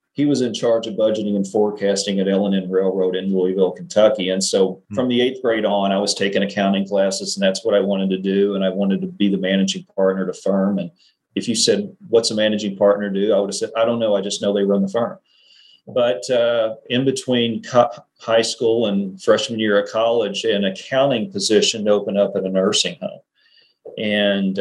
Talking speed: 215 wpm